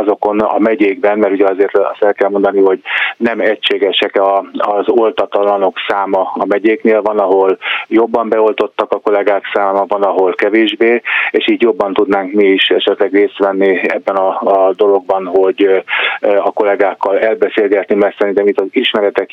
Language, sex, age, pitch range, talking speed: Hungarian, male, 20-39, 95-110 Hz, 150 wpm